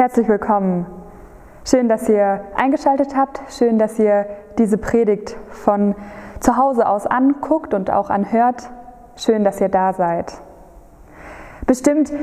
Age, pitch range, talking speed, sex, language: 20-39, 200-245 Hz, 130 wpm, female, German